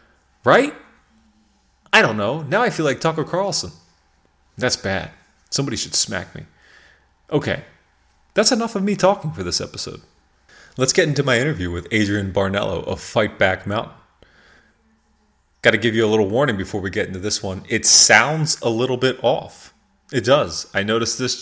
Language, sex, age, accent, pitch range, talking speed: English, male, 30-49, American, 100-140 Hz, 170 wpm